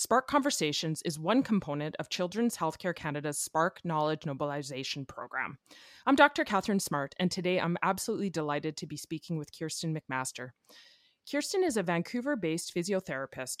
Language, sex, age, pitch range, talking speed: English, female, 30-49, 150-200 Hz, 145 wpm